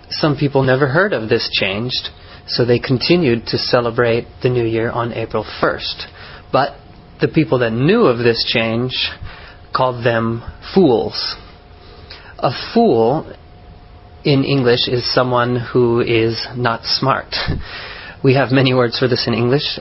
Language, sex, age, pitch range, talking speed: English, male, 30-49, 105-130 Hz, 140 wpm